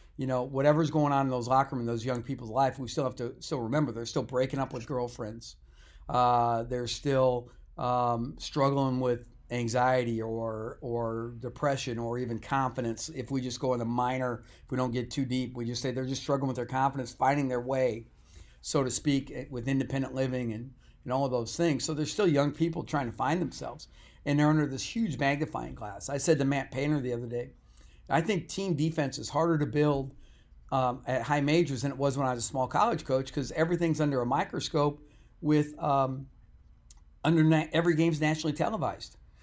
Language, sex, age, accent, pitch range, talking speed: English, male, 50-69, American, 125-155 Hz, 205 wpm